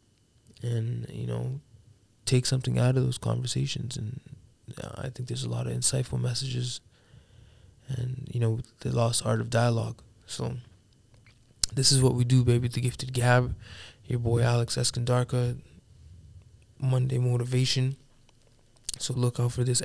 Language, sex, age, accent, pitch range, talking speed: English, male, 20-39, American, 115-125 Hz, 145 wpm